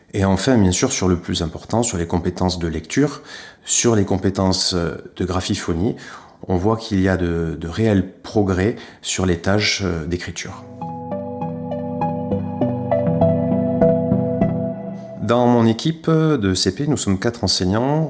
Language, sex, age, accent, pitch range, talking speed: French, male, 30-49, French, 85-110 Hz, 135 wpm